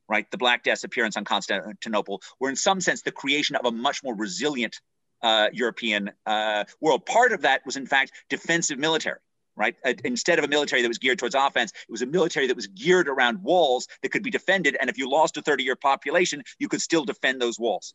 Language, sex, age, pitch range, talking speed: English, male, 30-49, 120-175 Hz, 225 wpm